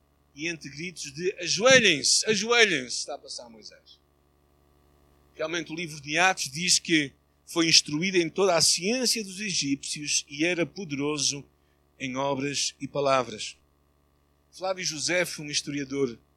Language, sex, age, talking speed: Portuguese, male, 50-69, 130 wpm